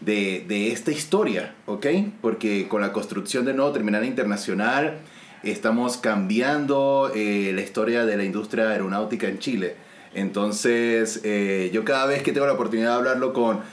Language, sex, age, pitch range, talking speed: Spanish, male, 30-49, 110-150 Hz, 155 wpm